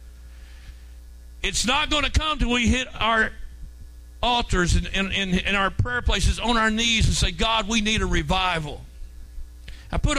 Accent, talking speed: American, 175 wpm